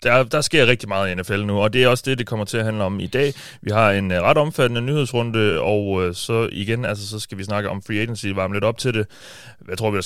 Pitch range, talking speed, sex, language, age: 95-115 Hz, 285 wpm, male, Danish, 30-49